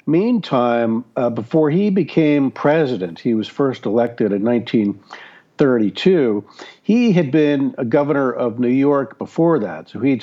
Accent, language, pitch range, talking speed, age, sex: American, English, 110-145 Hz, 140 wpm, 50-69, male